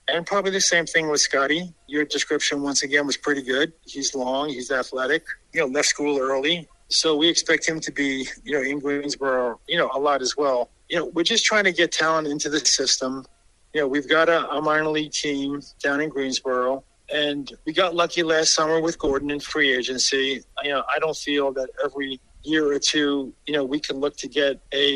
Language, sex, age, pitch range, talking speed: English, male, 50-69, 135-155 Hz, 220 wpm